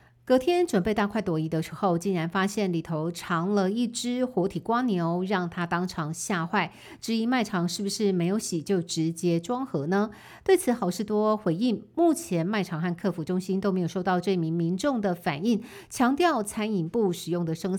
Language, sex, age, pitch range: Chinese, female, 50-69, 170-210 Hz